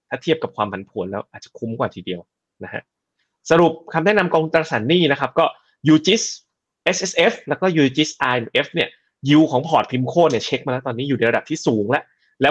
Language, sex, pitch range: Thai, male, 115-155 Hz